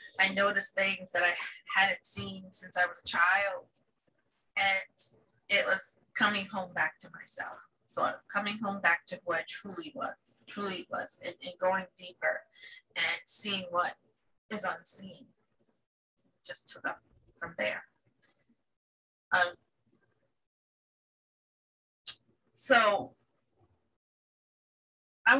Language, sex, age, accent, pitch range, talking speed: English, female, 30-49, American, 195-275 Hz, 115 wpm